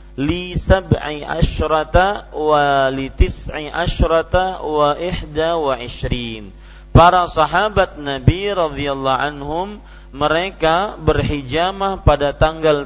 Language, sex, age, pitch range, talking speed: Indonesian, male, 40-59, 125-165 Hz, 95 wpm